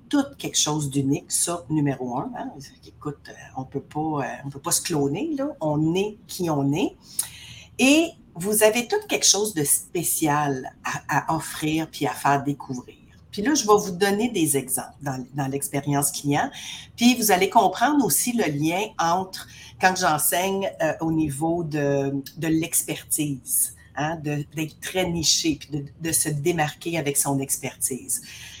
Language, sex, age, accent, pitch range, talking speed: French, female, 50-69, Canadian, 140-185 Hz, 160 wpm